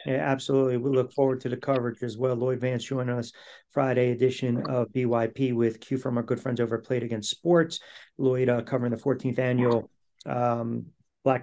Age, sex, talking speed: 40-59, male, 195 wpm